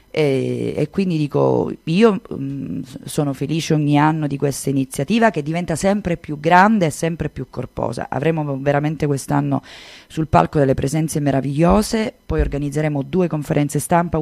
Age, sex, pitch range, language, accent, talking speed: 30-49, female, 135-155 Hz, Italian, native, 150 wpm